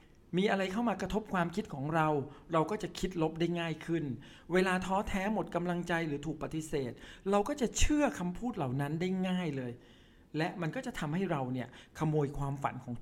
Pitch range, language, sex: 140-185 Hz, Thai, male